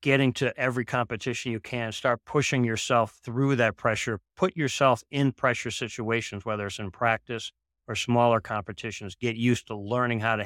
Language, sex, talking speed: English, male, 170 wpm